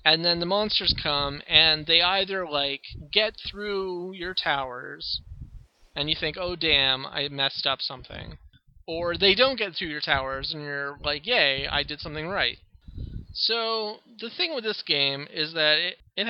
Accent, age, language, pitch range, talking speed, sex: American, 30-49, English, 140-190 Hz, 175 wpm, male